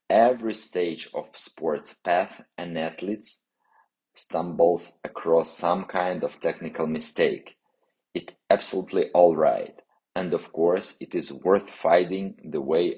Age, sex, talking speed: 30-49, male, 125 wpm